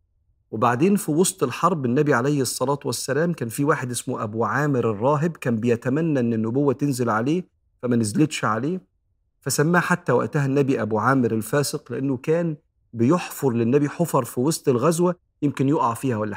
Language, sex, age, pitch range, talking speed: Arabic, male, 40-59, 110-145 Hz, 160 wpm